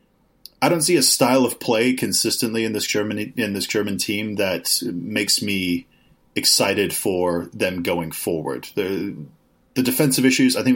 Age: 30-49